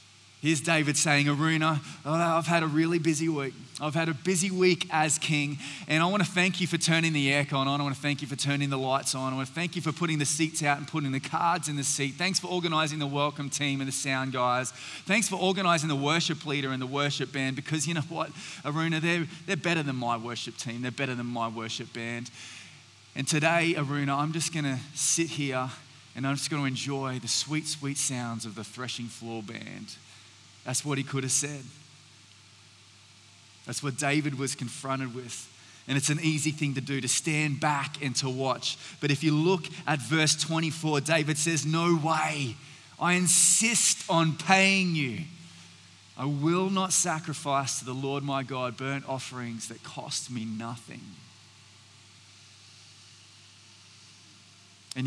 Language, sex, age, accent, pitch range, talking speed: English, male, 20-39, Australian, 125-160 Hz, 190 wpm